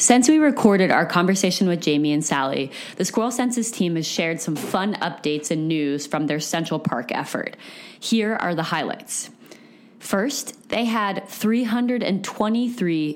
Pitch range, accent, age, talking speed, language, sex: 160-210 Hz, American, 20-39, 150 wpm, English, female